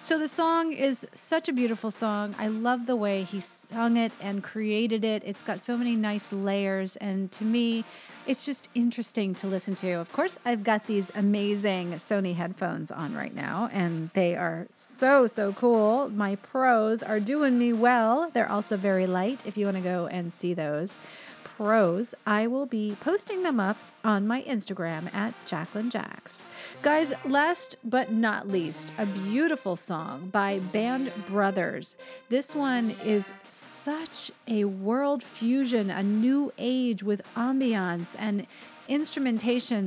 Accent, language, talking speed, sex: American, English, 160 wpm, female